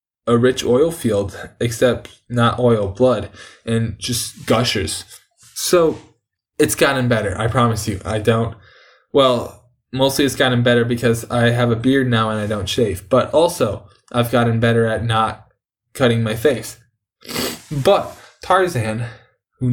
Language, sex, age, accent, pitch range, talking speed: English, male, 10-29, American, 115-150 Hz, 145 wpm